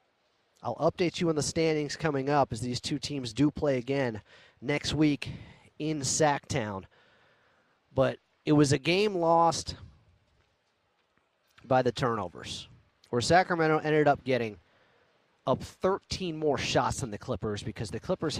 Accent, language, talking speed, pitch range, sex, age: American, English, 140 wpm, 120-155 Hz, male, 30-49